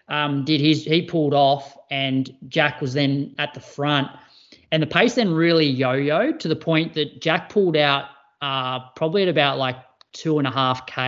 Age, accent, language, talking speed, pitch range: 30-49, Australian, English, 180 wpm, 135-160 Hz